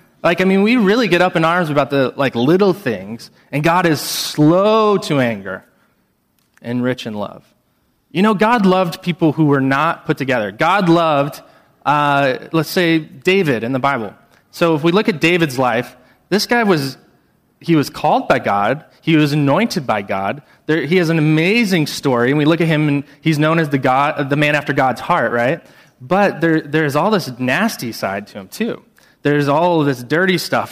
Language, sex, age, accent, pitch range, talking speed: English, male, 20-39, American, 130-170 Hz, 200 wpm